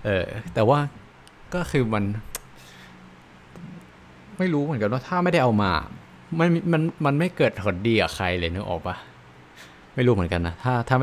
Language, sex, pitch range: Thai, male, 80-115 Hz